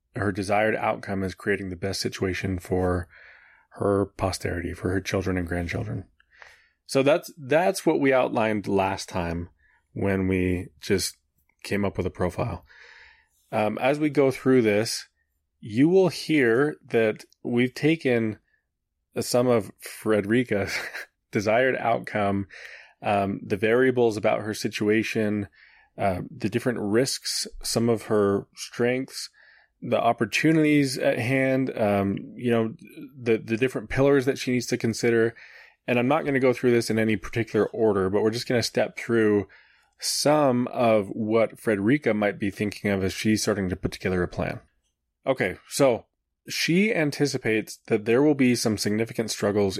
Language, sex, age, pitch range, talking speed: English, male, 20-39, 100-125 Hz, 150 wpm